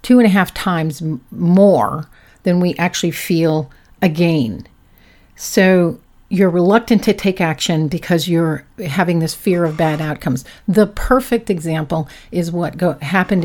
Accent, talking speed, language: American, 145 wpm, English